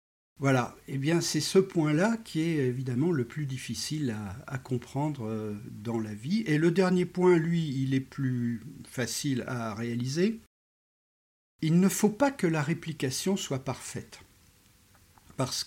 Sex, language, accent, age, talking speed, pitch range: male, French, French, 50-69, 150 wpm, 115-150 Hz